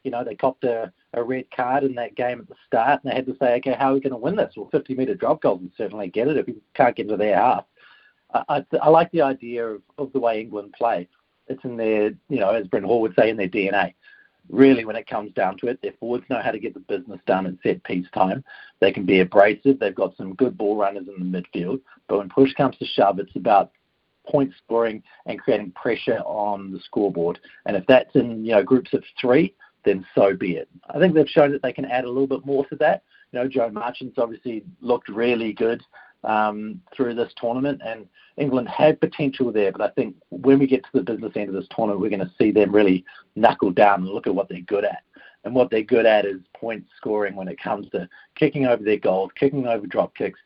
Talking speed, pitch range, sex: 245 wpm, 105-135 Hz, male